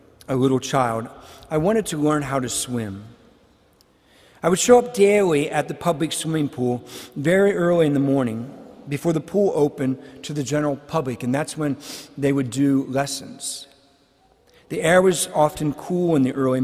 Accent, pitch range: American, 130-175 Hz